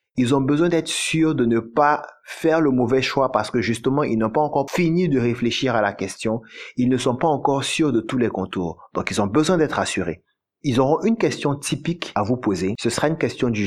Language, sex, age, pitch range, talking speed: French, male, 30-49, 115-150 Hz, 235 wpm